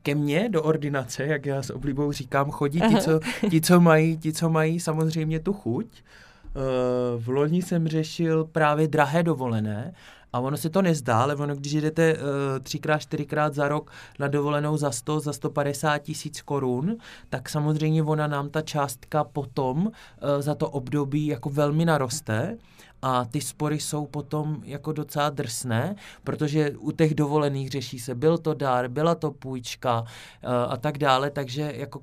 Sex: male